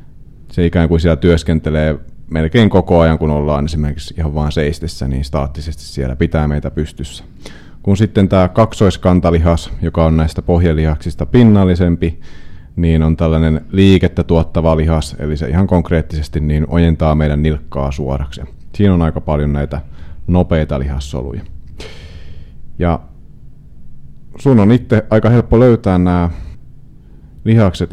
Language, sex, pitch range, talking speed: Finnish, male, 75-90 Hz, 130 wpm